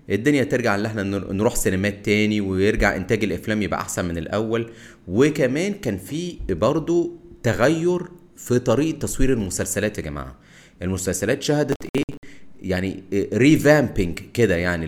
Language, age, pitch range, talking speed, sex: Arabic, 30-49, 95-155 Hz, 135 wpm, male